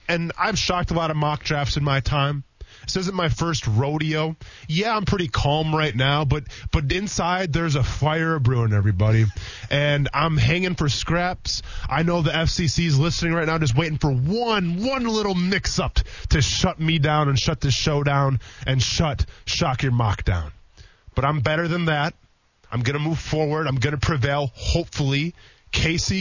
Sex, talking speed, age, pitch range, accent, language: male, 185 wpm, 20-39, 120-180 Hz, American, English